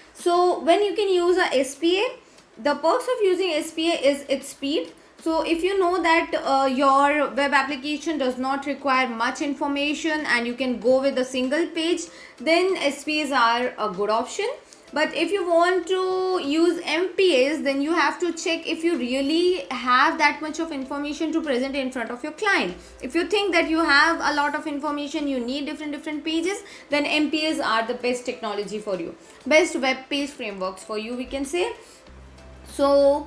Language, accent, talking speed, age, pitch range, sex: English, Indian, 185 wpm, 20-39, 270-330 Hz, female